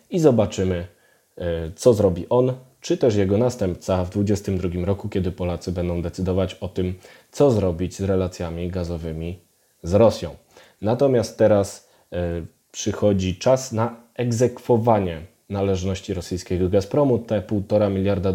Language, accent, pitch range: Polish, native, 95-110 Hz